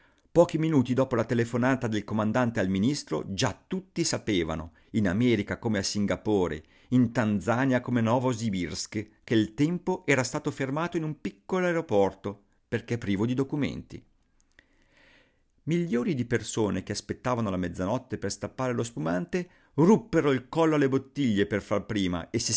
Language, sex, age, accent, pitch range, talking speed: Italian, male, 50-69, native, 100-155 Hz, 150 wpm